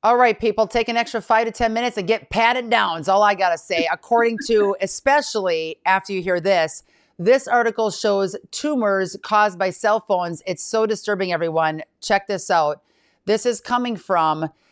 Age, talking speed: 40-59, 190 wpm